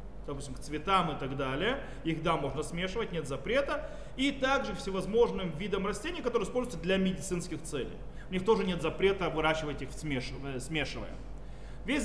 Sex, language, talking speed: male, Russian, 155 wpm